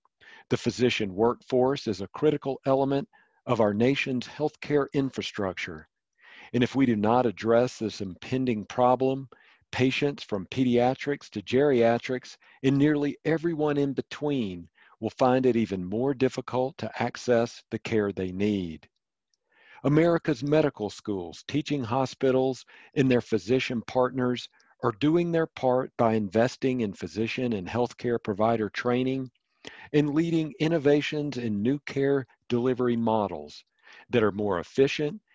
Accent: American